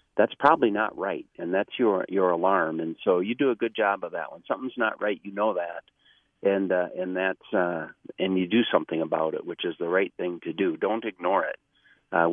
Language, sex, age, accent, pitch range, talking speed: English, male, 40-59, American, 90-115 Hz, 230 wpm